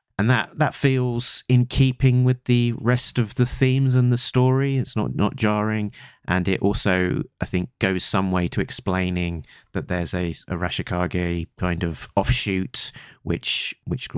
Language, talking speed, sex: English, 165 wpm, male